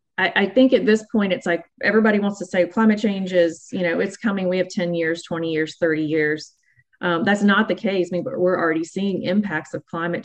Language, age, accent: English, 30-49, American